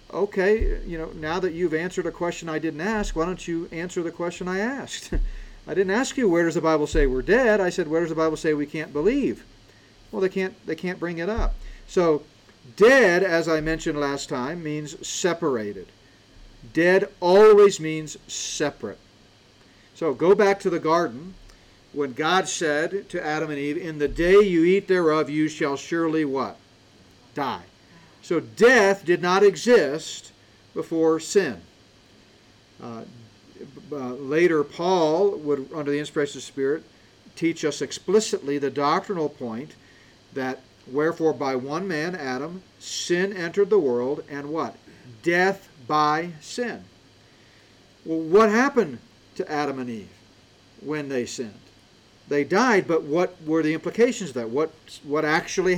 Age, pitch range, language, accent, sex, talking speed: 50-69, 140-185 Hz, English, American, male, 160 wpm